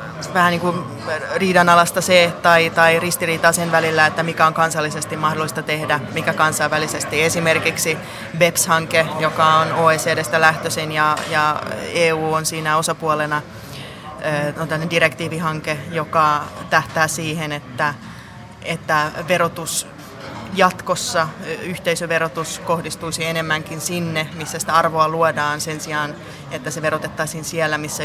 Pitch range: 155-170 Hz